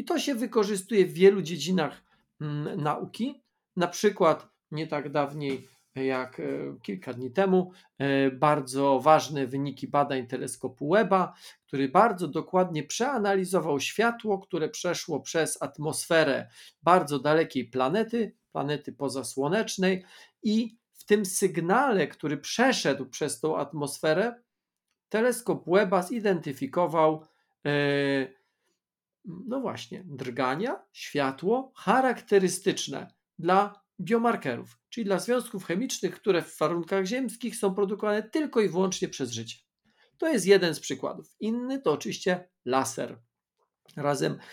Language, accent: Polish, native